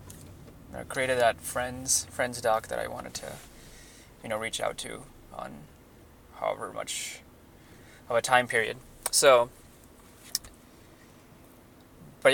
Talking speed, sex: 115 wpm, male